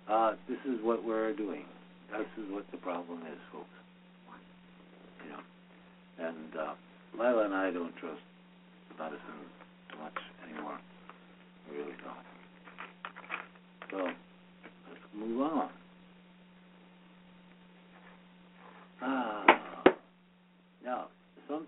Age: 60-79